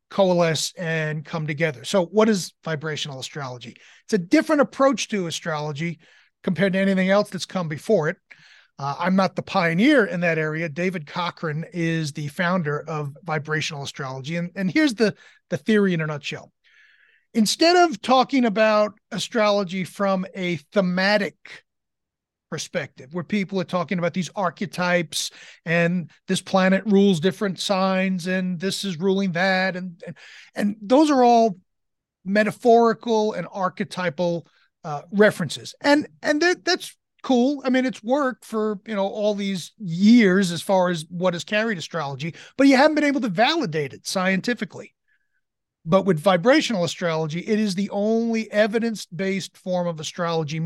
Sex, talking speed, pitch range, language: male, 150 wpm, 170-215 Hz, English